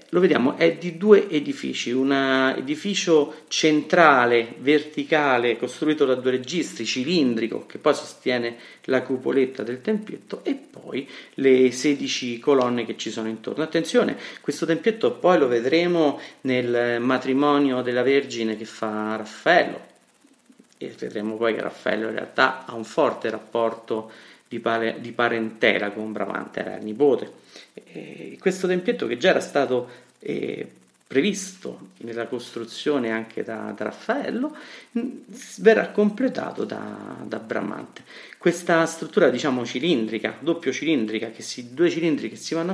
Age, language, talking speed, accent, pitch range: 40-59, Italian, 130 wpm, native, 120-175 Hz